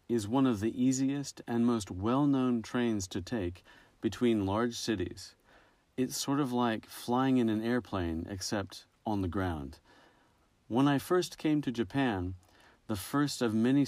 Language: Japanese